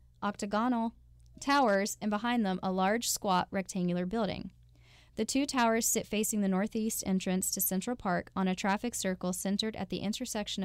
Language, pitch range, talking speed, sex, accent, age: English, 180-220 Hz, 165 wpm, female, American, 10-29